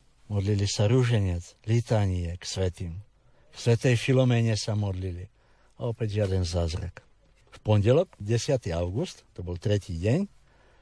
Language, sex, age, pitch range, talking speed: Slovak, male, 60-79, 95-130 Hz, 130 wpm